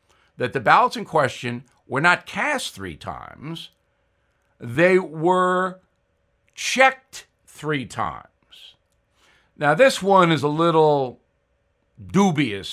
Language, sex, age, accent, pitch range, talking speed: English, male, 60-79, American, 125-180 Hz, 105 wpm